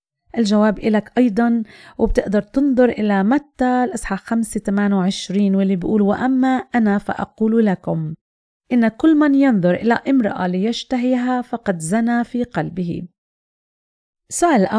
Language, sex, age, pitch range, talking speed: Arabic, female, 30-49, 190-240 Hz, 110 wpm